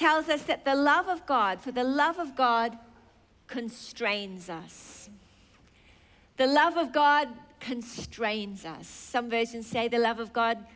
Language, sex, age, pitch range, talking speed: English, female, 40-59, 215-270 Hz, 150 wpm